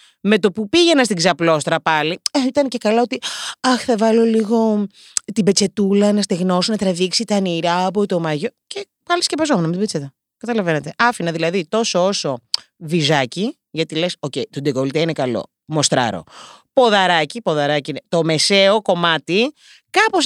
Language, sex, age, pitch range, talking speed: Greek, female, 30-49, 170-285 Hz, 155 wpm